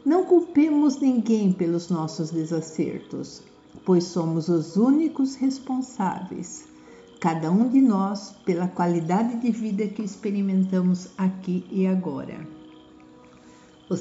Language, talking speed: Portuguese, 105 wpm